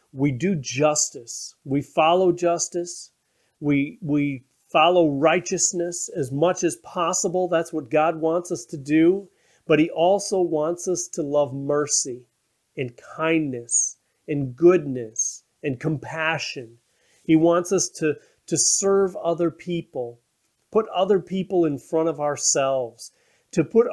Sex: male